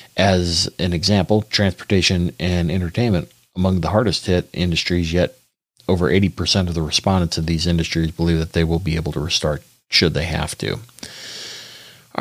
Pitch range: 85-105 Hz